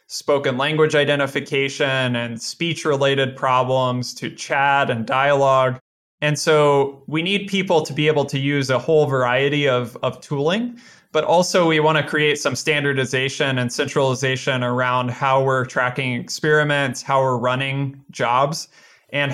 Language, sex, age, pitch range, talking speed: English, male, 20-39, 130-150 Hz, 145 wpm